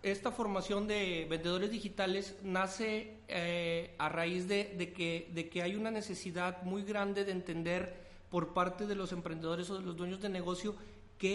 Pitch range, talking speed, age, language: 175-205 Hz, 165 wpm, 40-59, Spanish